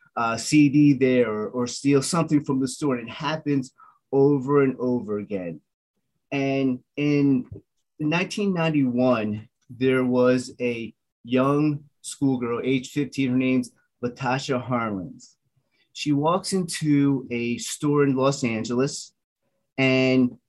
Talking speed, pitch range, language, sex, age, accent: 120 wpm, 125-150 Hz, English, male, 30-49, American